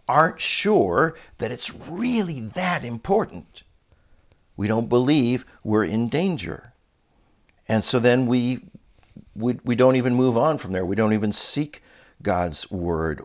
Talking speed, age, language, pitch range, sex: 140 wpm, 50-69, English, 105-140 Hz, male